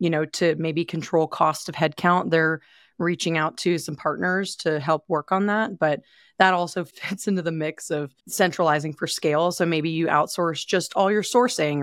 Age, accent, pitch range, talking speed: 30-49, American, 155-185 Hz, 195 wpm